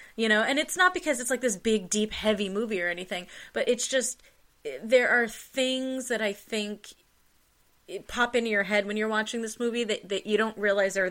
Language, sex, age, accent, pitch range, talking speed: English, female, 30-49, American, 190-235 Hz, 215 wpm